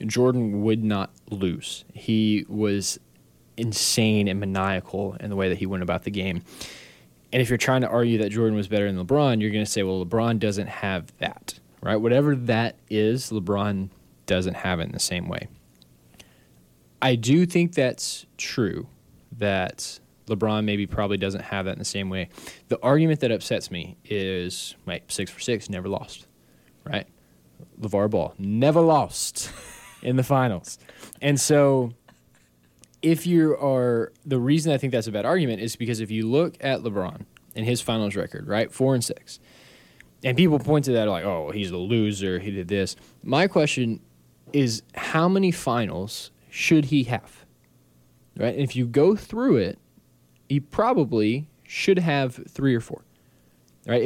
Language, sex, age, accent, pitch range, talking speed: English, male, 20-39, American, 95-130 Hz, 170 wpm